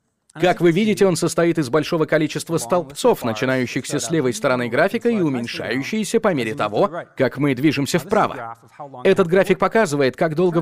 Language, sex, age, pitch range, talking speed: Russian, male, 30-49, 135-185 Hz, 160 wpm